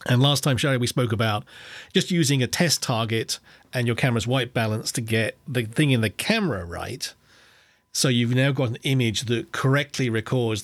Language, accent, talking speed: English, British, 190 wpm